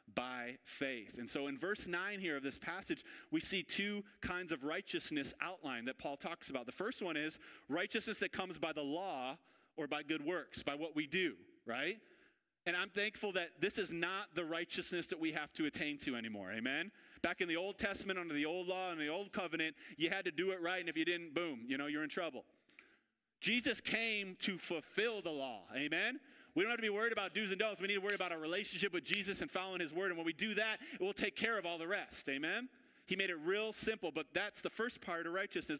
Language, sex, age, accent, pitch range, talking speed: English, male, 30-49, American, 155-205 Hz, 240 wpm